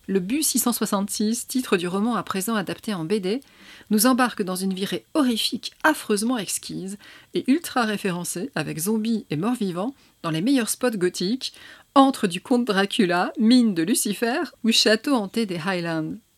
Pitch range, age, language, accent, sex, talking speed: 190-250 Hz, 40-59, French, French, female, 160 wpm